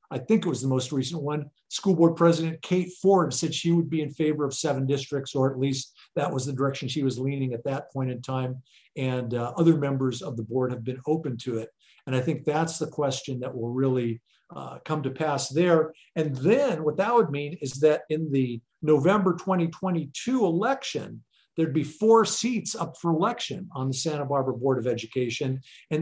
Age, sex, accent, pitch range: 50-69, male, American, 135-175 Hz